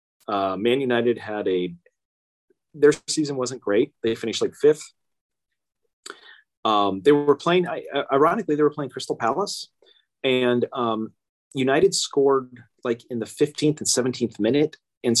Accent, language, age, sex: American, English, 30-49, male